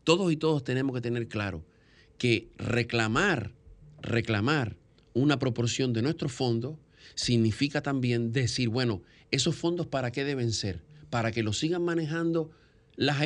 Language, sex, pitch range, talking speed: Spanish, male, 115-150 Hz, 140 wpm